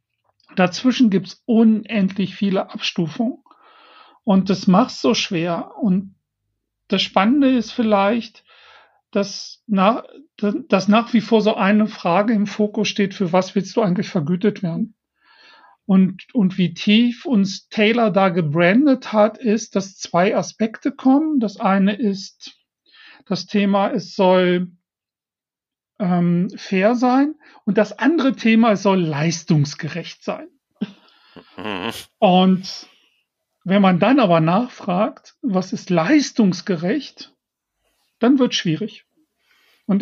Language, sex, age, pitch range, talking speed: German, male, 40-59, 185-230 Hz, 120 wpm